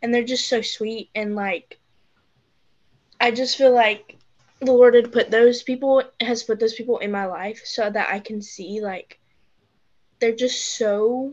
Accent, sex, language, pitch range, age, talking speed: American, female, English, 210-245 Hz, 10-29, 175 wpm